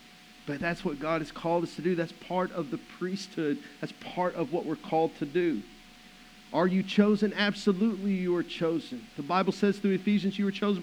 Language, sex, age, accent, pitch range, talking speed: English, male, 50-69, American, 170-240 Hz, 205 wpm